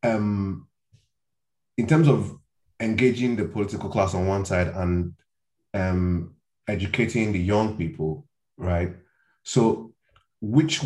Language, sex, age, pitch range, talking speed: English, male, 20-39, 95-125 Hz, 110 wpm